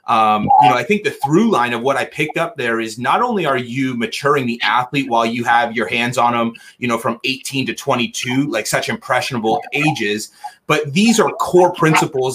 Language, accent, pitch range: English, American, 130-185 Hz